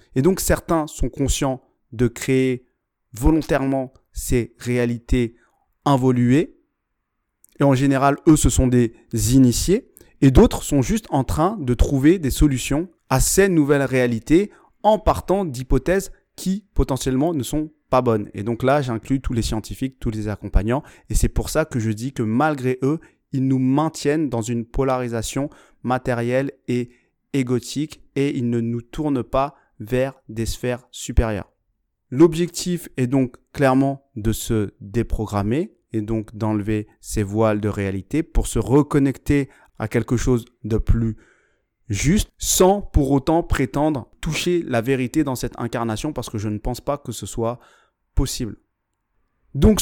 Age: 30-49